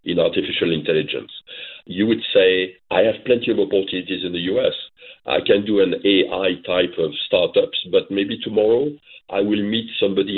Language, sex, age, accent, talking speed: English, male, 50-69, French, 170 wpm